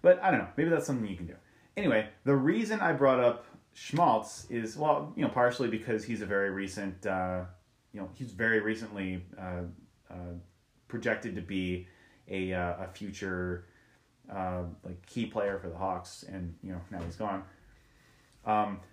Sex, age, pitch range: male, 30-49, 95-120 Hz